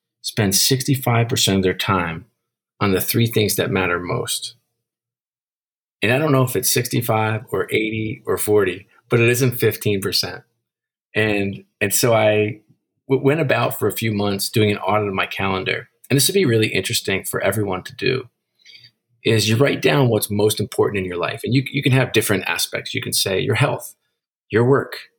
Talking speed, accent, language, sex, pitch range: 185 wpm, American, English, male, 105-130 Hz